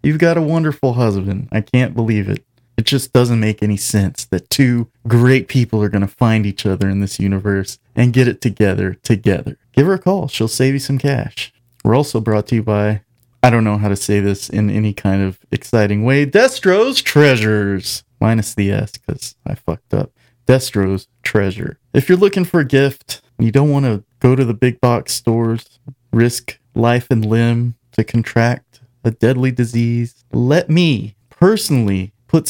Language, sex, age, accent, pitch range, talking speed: English, male, 30-49, American, 110-135 Hz, 190 wpm